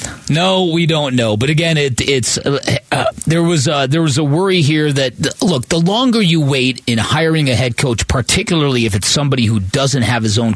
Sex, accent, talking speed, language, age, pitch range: male, American, 210 wpm, English, 40-59, 120-155 Hz